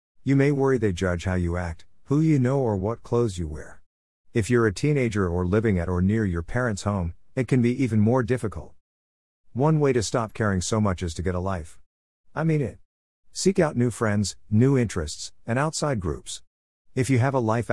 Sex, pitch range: male, 90-120 Hz